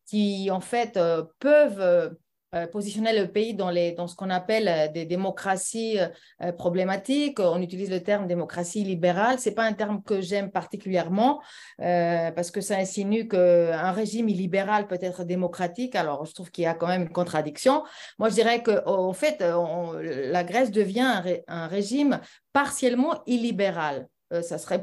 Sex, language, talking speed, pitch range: female, French, 175 wpm, 175-215 Hz